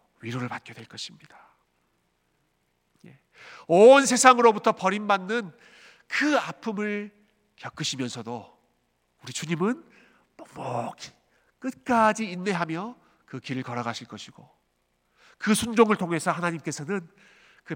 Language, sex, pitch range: Korean, male, 130-205 Hz